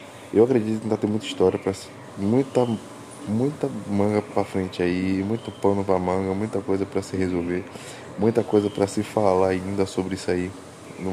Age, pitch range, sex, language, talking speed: 20-39, 95-105 Hz, male, Portuguese, 185 wpm